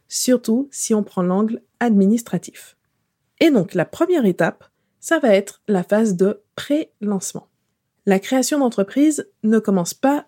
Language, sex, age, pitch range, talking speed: French, female, 20-39, 185-245 Hz, 140 wpm